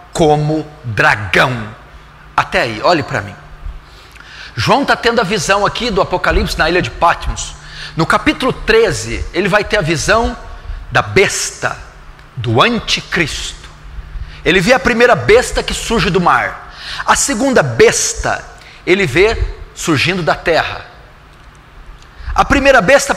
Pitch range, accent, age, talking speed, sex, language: 185-255 Hz, Brazilian, 40-59, 130 wpm, male, Portuguese